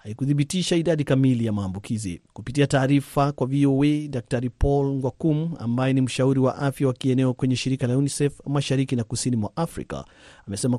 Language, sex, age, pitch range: Swahili, male, 40-59, 125-145 Hz